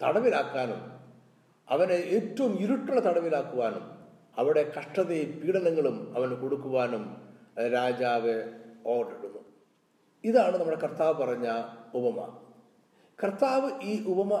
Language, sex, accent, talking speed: Malayalam, male, native, 85 wpm